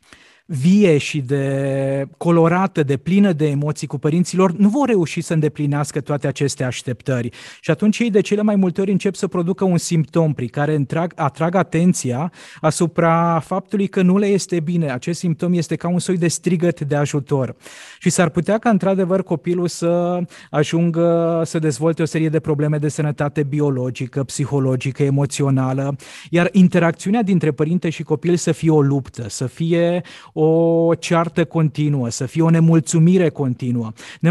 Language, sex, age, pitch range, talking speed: Romanian, male, 30-49, 145-175 Hz, 160 wpm